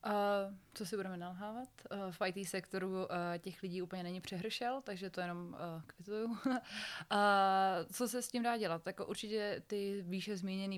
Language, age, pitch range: Czech, 20-39, 170-200 Hz